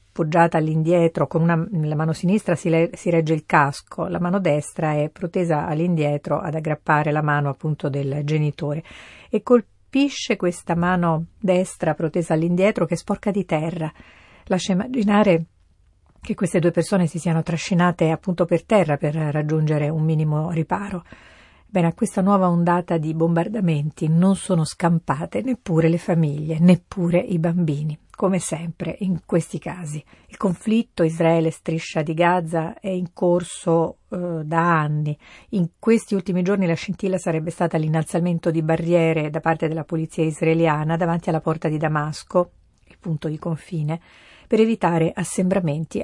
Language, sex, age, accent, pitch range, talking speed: Italian, female, 50-69, native, 155-180 Hz, 145 wpm